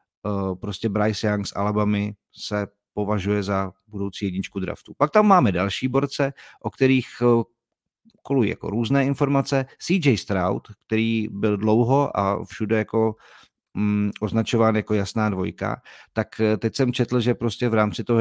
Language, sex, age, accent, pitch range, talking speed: Czech, male, 50-69, native, 100-115 Hz, 145 wpm